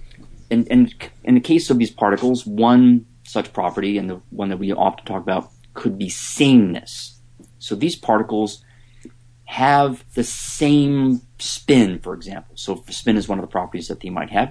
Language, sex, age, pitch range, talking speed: English, male, 30-49, 110-125 Hz, 175 wpm